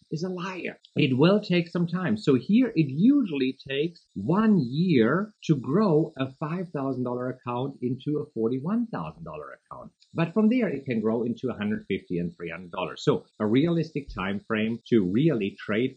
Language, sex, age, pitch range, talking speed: English, male, 50-69, 120-185 Hz, 160 wpm